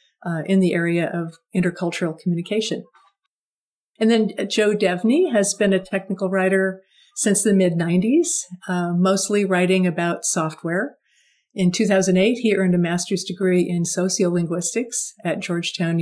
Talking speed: 125 wpm